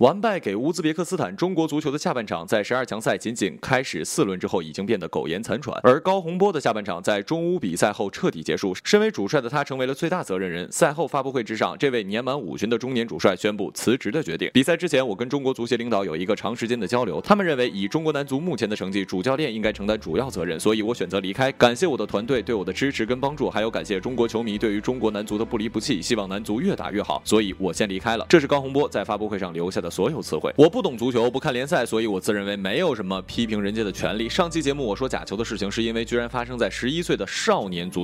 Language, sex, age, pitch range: Chinese, male, 20-39, 105-160 Hz